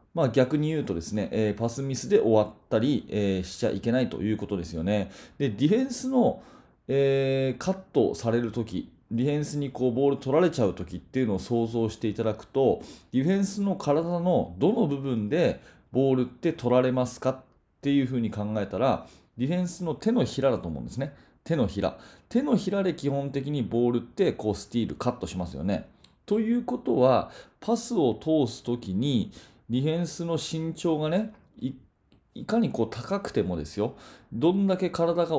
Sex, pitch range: male, 115-165 Hz